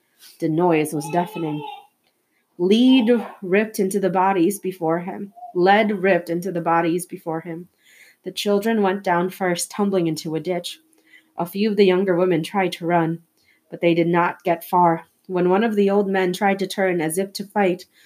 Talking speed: 185 wpm